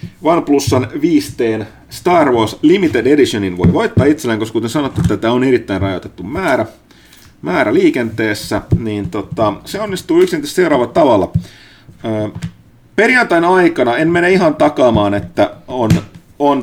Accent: native